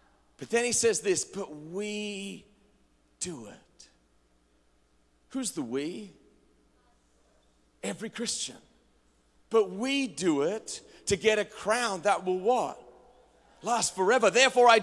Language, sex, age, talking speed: English, male, 40-59, 115 wpm